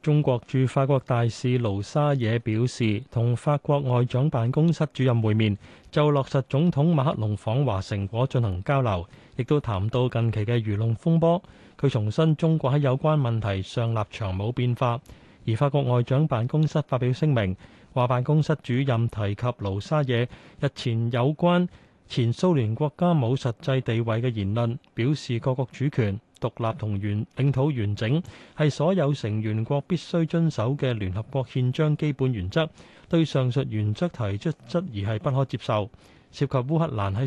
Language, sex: Chinese, male